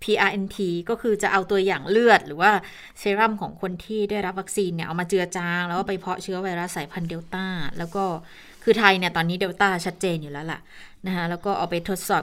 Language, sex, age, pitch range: Thai, female, 20-39, 180-240 Hz